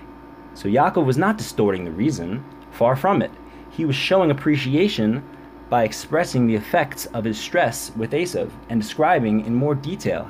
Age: 30-49